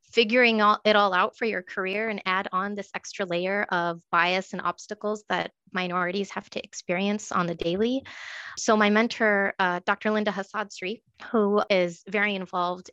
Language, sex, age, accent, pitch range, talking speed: English, female, 20-39, American, 180-210 Hz, 165 wpm